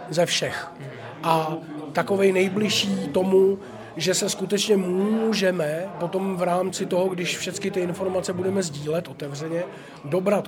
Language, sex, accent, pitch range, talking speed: Czech, male, native, 155-185 Hz, 125 wpm